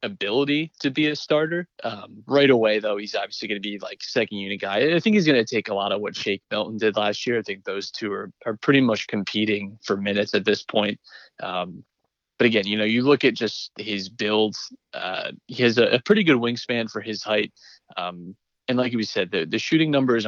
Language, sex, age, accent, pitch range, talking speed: English, male, 20-39, American, 105-125 Hz, 230 wpm